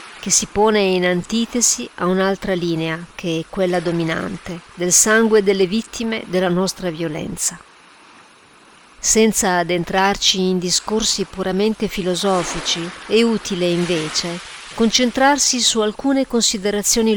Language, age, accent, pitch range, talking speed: Italian, 40-59, native, 180-230 Hz, 110 wpm